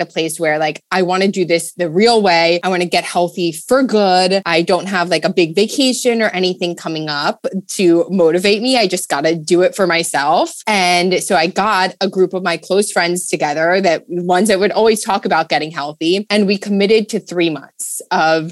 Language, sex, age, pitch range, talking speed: English, female, 20-39, 175-225 Hz, 220 wpm